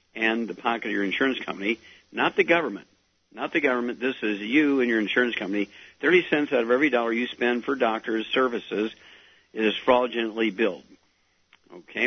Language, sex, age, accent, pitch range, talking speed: English, male, 60-79, American, 110-135 Hz, 175 wpm